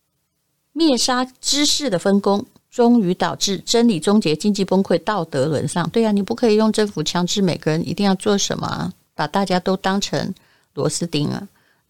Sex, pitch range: female, 165-205 Hz